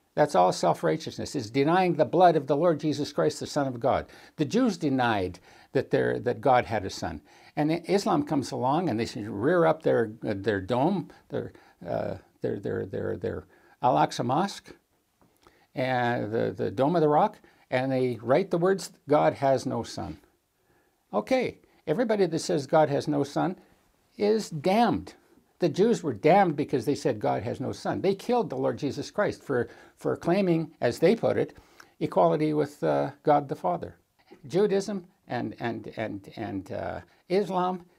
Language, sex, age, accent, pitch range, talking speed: English, male, 60-79, American, 135-185 Hz, 170 wpm